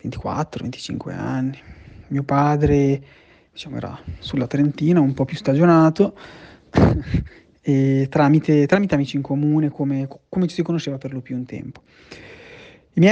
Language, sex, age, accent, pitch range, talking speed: Italian, male, 20-39, native, 135-160 Hz, 135 wpm